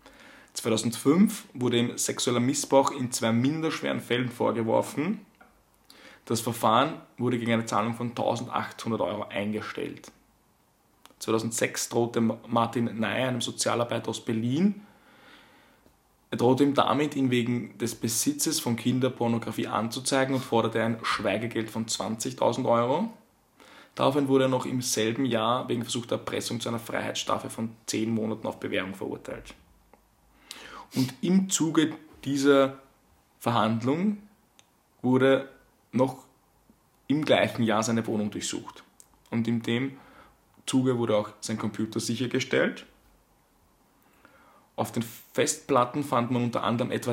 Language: German